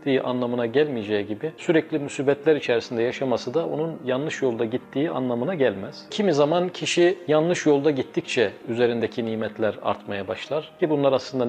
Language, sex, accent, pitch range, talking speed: Turkish, male, native, 125-160 Hz, 140 wpm